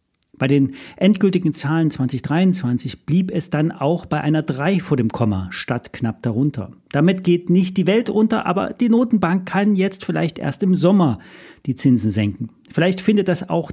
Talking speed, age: 175 wpm, 40-59